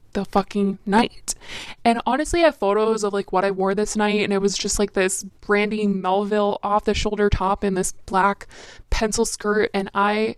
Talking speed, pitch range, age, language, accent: 195 wpm, 195-230 Hz, 20-39, English, American